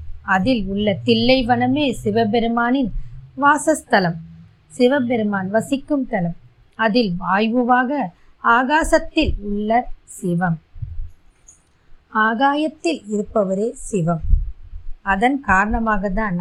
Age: 20-39